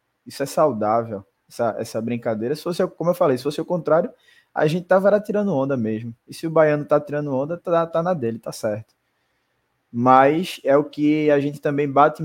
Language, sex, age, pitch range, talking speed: Portuguese, male, 20-39, 120-160 Hz, 205 wpm